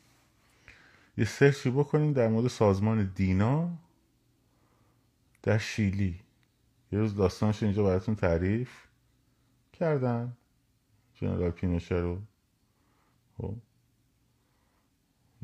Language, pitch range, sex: Persian, 90-120 Hz, male